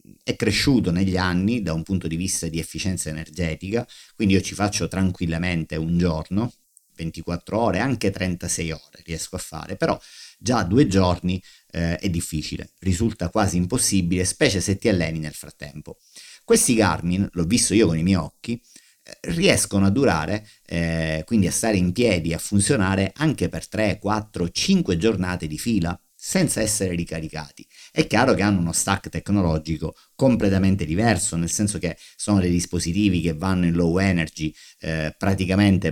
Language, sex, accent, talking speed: Italian, male, native, 160 wpm